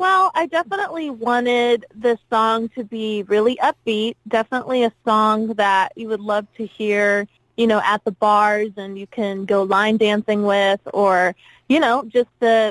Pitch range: 210-235 Hz